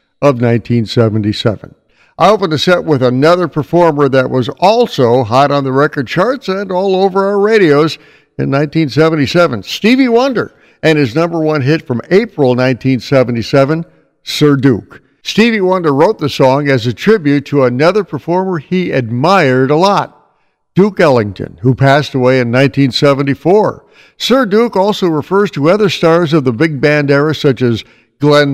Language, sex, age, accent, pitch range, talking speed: English, male, 60-79, American, 130-175 Hz, 155 wpm